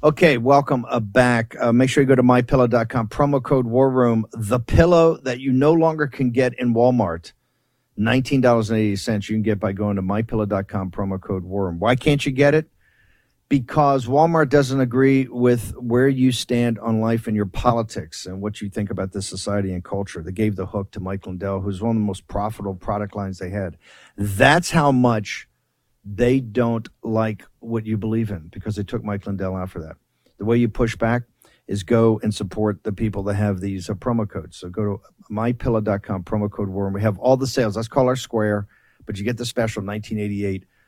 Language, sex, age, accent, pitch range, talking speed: English, male, 50-69, American, 100-125 Hz, 200 wpm